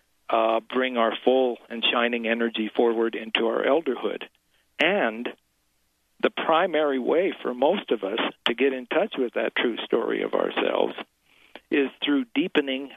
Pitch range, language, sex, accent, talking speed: 115-140 Hz, English, male, American, 150 wpm